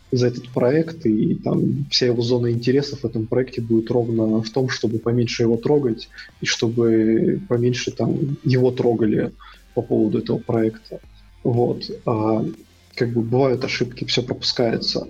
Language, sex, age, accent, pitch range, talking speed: Russian, male, 20-39, native, 115-130 Hz, 145 wpm